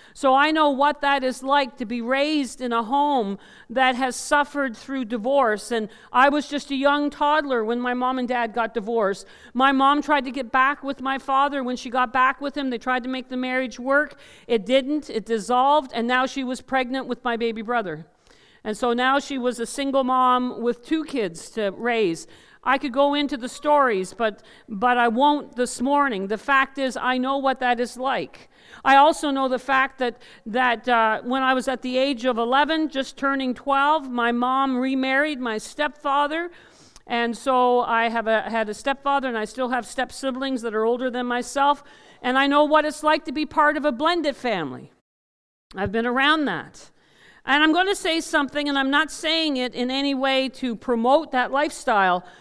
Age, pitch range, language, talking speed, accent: 50-69, 240-285 Hz, English, 205 wpm, American